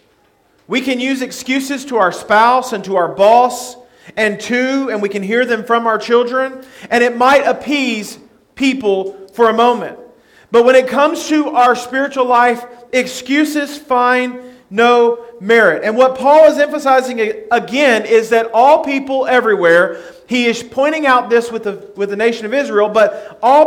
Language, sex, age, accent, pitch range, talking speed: English, male, 40-59, American, 210-270 Hz, 165 wpm